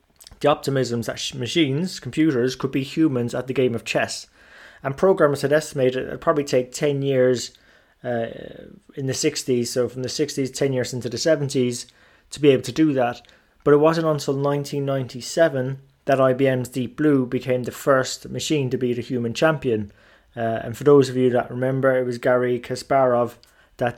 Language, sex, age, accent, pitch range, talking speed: English, male, 20-39, British, 125-145 Hz, 180 wpm